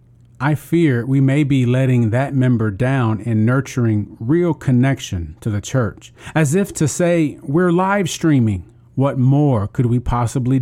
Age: 40-59